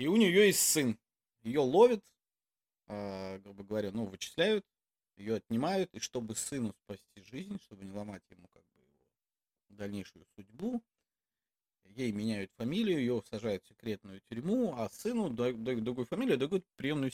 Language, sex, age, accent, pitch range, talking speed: Russian, male, 30-49, native, 105-150 Hz, 155 wpm